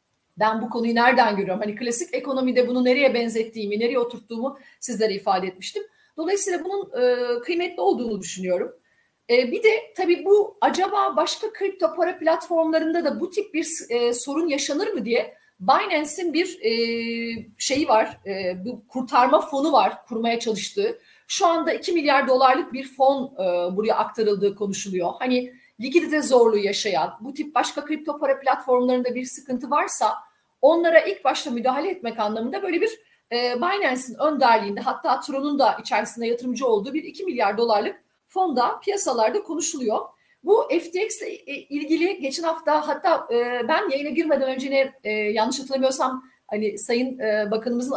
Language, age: Turkish, 40-59